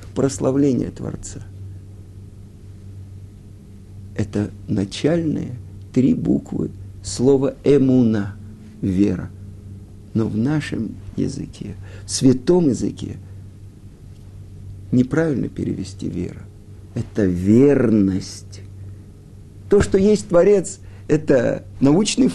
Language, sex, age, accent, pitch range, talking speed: Russian, male, 50-69, native, 100-140 Hz, 70 wpm